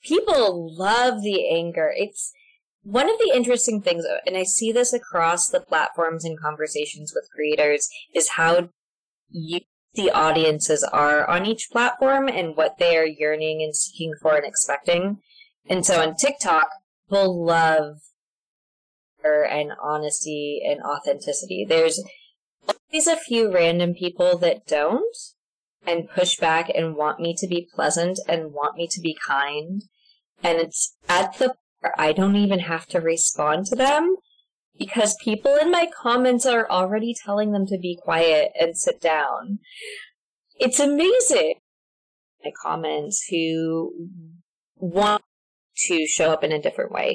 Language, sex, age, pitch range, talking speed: English, female, 20-39, 160-245 Hz, 145 wpm